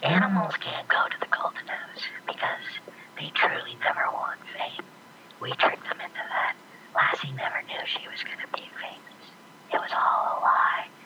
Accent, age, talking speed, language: American, 40-59, 175 wpm, English